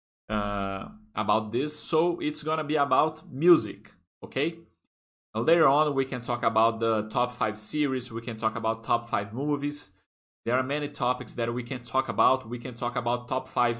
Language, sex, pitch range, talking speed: Portuguese, male, 110-145 Hz, 185 wpm